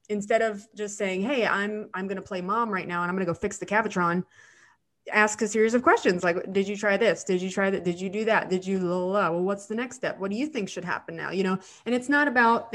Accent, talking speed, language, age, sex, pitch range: American, 290 wpm, English, 20-39, female, 185-230 Hz